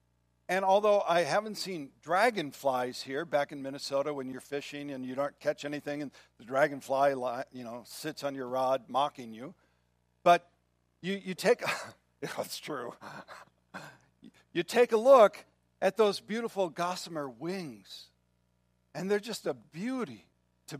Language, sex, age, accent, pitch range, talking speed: English, male, 60-79, American, 130-205 Hz, 145 wpm